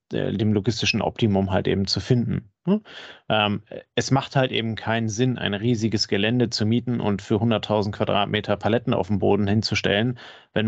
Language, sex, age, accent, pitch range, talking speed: German, male, 30-49, German, 105-120 Hz, 170 wpm